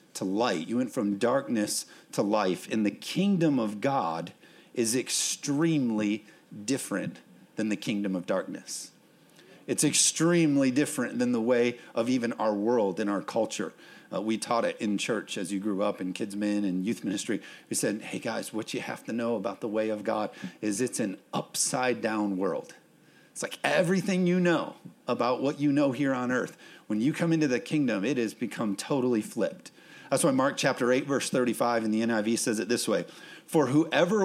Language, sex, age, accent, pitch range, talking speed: English, male, 40-59, American, 110-155 Hz, 190 wpm